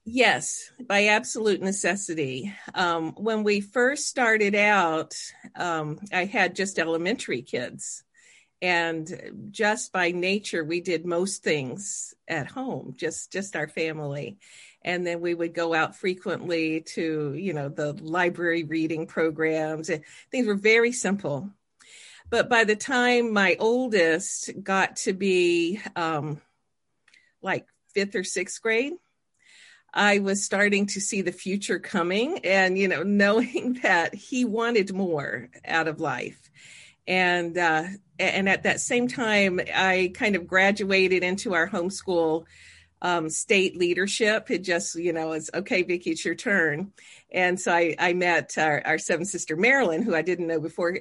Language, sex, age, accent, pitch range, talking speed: English, female, 50-69, American, 165-205 Hz, 145 wpm